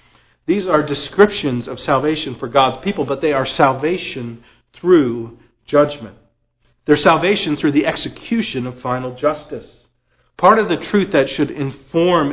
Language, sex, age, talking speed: English, male, 40-59, 140 wpm